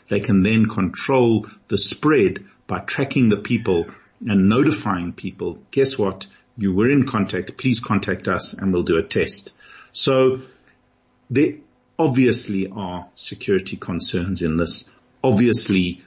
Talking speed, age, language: 135 wpm, 50-69, English